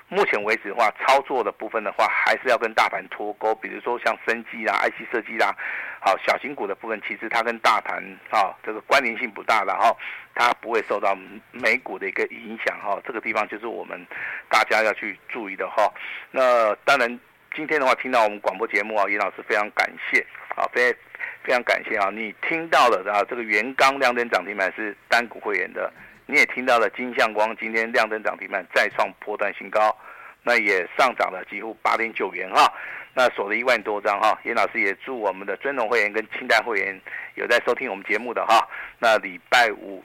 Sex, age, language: male, 50-69, Chinese